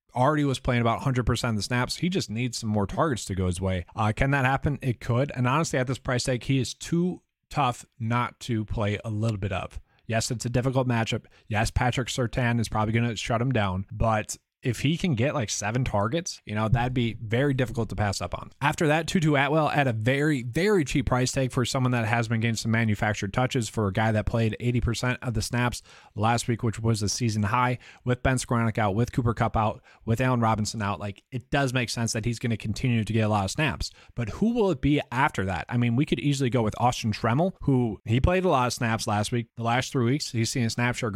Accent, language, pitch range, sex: American, English, 110-135 Hz, male